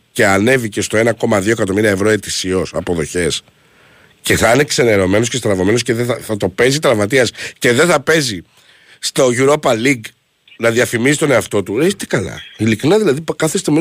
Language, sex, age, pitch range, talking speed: Greek, male, 60-79, 100-150 Hz, 175 wpm